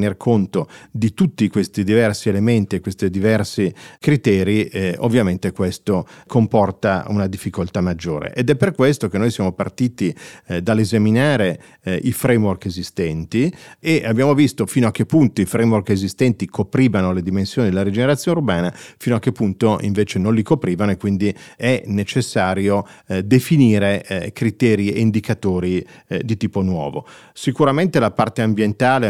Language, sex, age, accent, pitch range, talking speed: Italian, male, 40-59, native, 100-125 Hz, 145 wpm